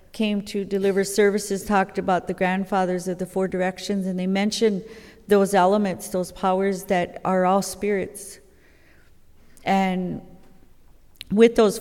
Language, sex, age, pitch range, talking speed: English, female, 40-59, 175-195 Hz, 130 wpm